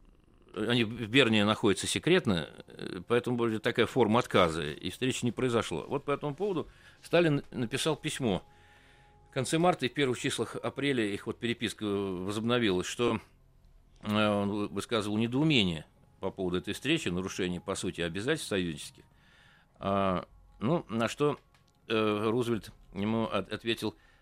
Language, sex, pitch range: Russian, male, 100-125 Hz